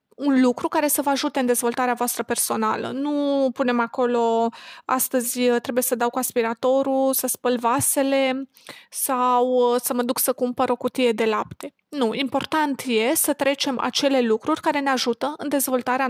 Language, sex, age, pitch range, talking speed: Romanian, female, 30-49, 235-270 Hz, 165 wpm